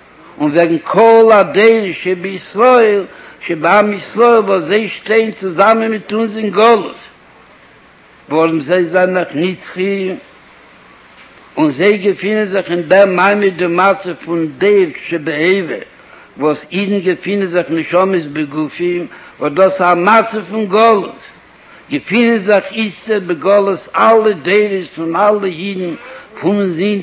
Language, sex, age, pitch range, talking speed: Hebrew, male, 60-79, 185-220 Hz, 110 wpm